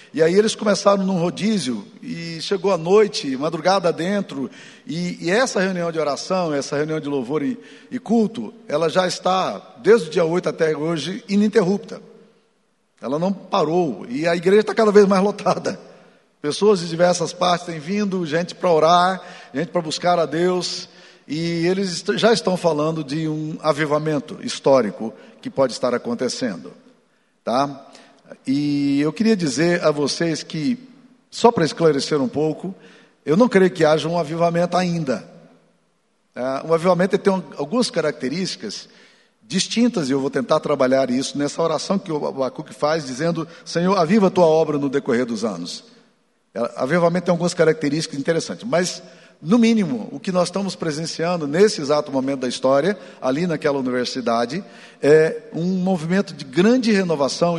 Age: 50-69